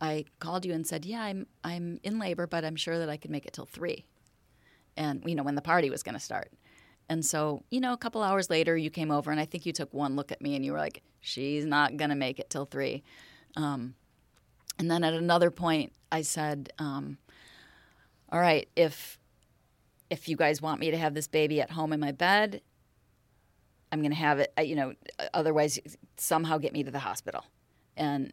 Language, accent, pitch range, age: English, American, 145-170 Hz, 30-49